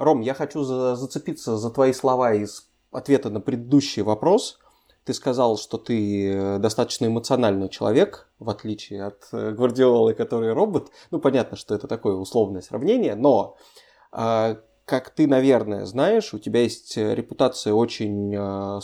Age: 20-39